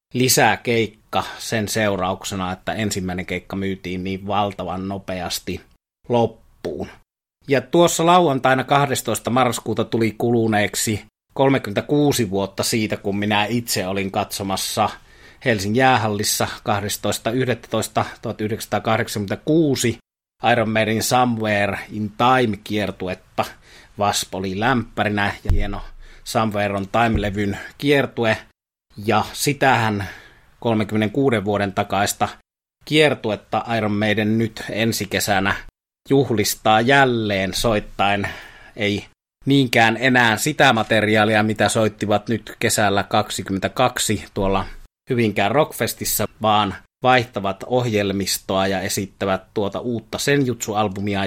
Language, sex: Finnish, male